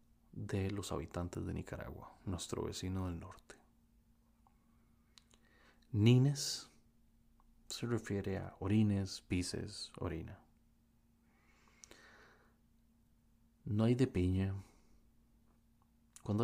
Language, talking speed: English, 75 wpm